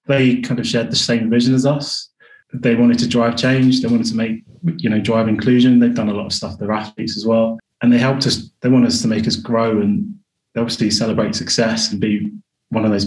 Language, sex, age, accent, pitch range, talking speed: English, male, 20-39, British, 110-125 Hz, 240 wpm